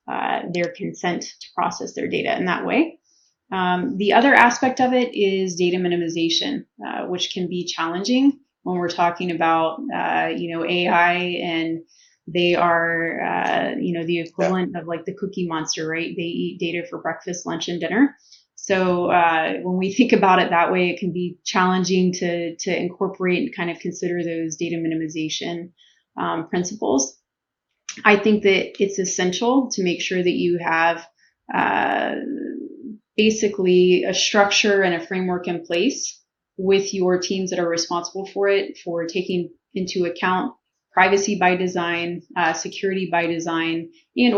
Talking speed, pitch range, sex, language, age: 160 wpm, 170-190 Hz, female, English, 30-49